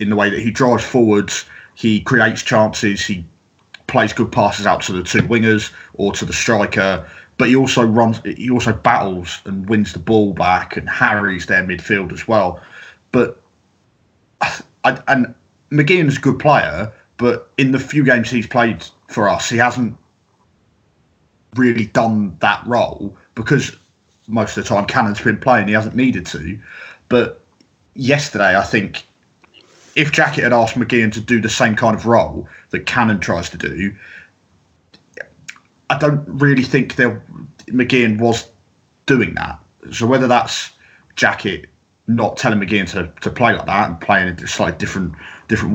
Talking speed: 160 wpm